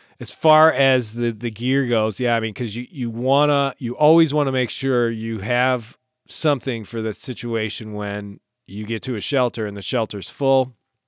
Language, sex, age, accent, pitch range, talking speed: English, male, 30-49, American, 110-135 Hz, 195 wpm